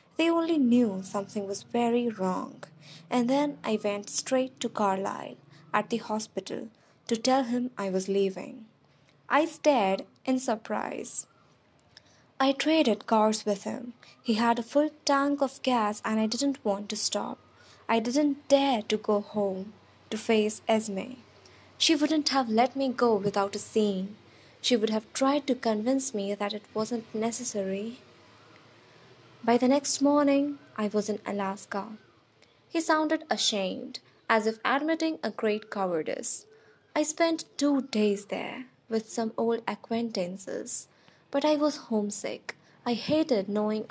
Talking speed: 145 wpm